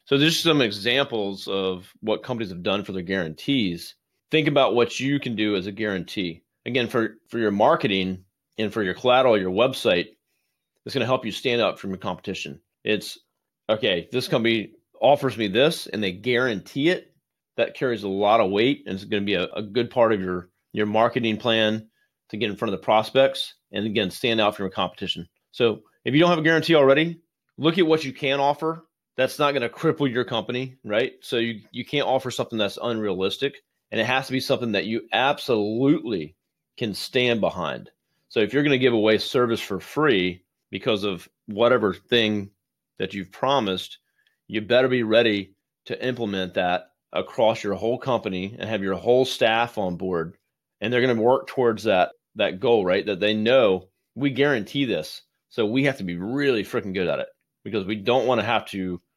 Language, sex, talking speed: English, male, 195 wpm